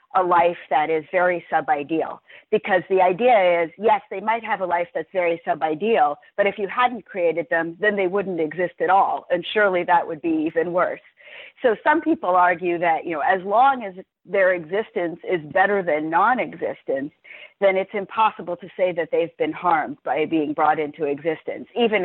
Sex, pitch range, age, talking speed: female, 160-210 Hz, 40-59, 190 wpm